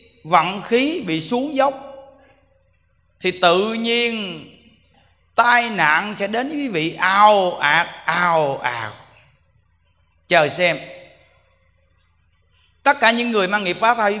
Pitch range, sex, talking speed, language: 155-225 Hz, male, 135 wpm, Vietnamese